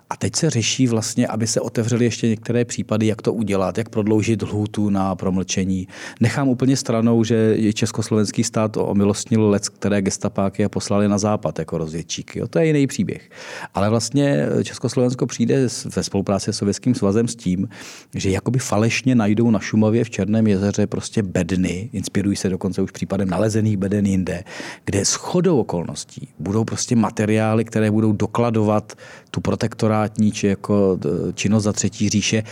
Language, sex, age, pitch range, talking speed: Czech, male, 40-59, 100-120 Hz, 160 wpm